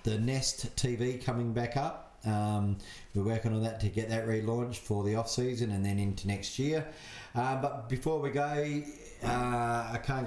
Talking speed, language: 180 wpm, English